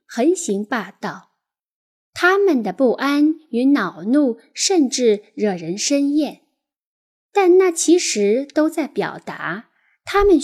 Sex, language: female, Chinese